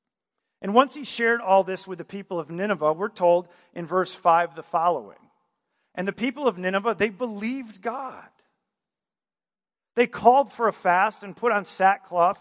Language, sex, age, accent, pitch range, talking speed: English, male, 40-59, American, 170-205 Hz, 170 wpm